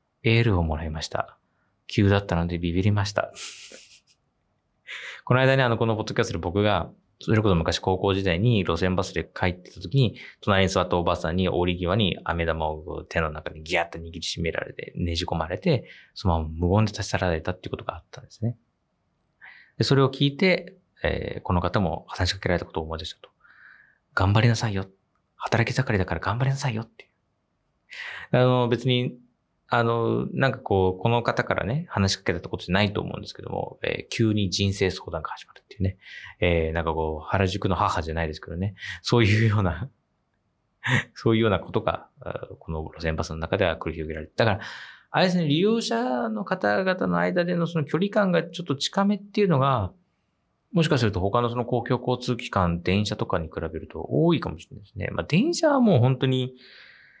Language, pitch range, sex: Japanese, 90-125 Hz, male